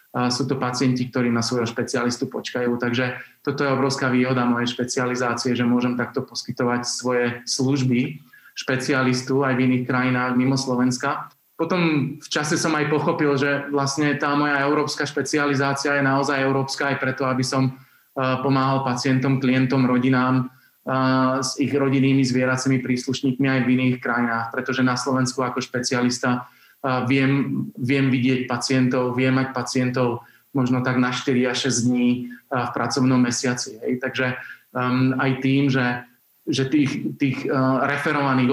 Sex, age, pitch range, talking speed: male, 20-39, 125-135 Hz, 145 wpm